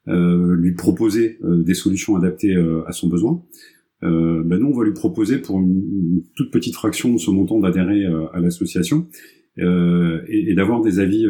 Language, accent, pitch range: French, French, 85-95 Hz